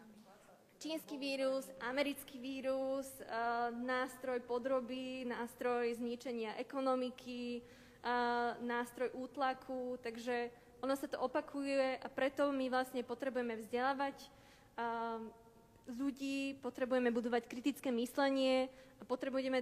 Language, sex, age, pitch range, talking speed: Slovak, female, 20-39, 230-255 Hz, 100 wpm